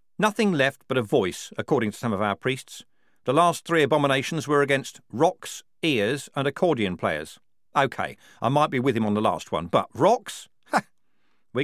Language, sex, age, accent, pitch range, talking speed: English, male, 50-69, British, 115-160 Hz, 185 wpm